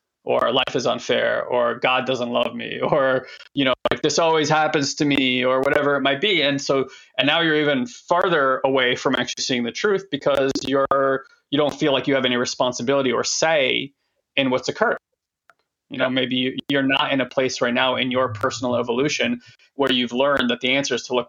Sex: male